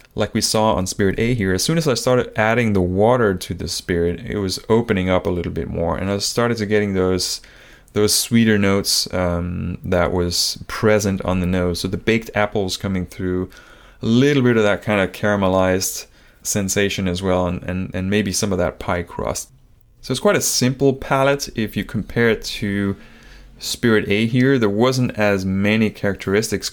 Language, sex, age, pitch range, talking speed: English, male, 20-39, 95-120 Hz, 195 wpm